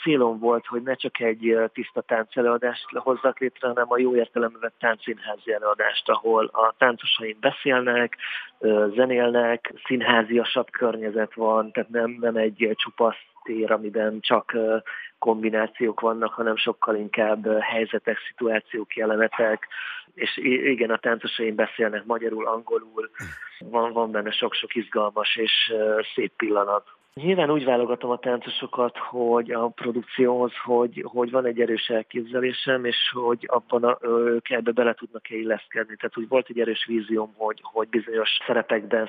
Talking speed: 135 wpm